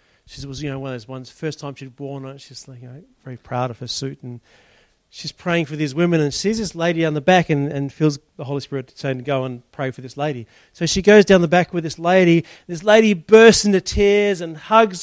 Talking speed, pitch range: 255 wpm, 130-185 Hz